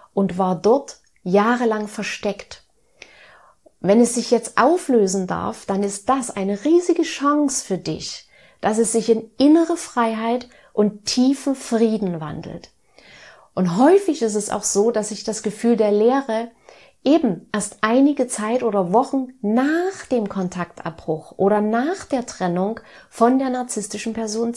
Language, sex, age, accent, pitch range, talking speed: German, female, 30-49, German, 200-270 Hz, 140 wpm